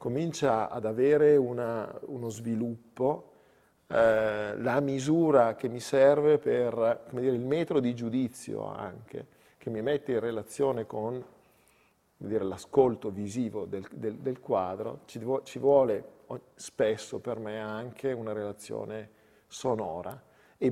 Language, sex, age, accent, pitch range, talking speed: Italian, male, 50-69, native, 110-140 Hz, 125 wpm